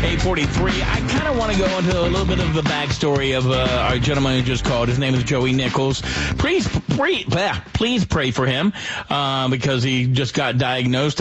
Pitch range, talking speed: 115-150 Hz, 215 wpm